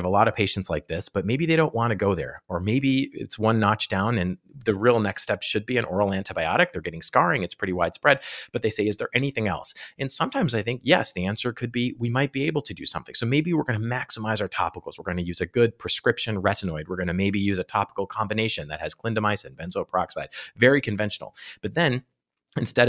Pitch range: 90-115 Hz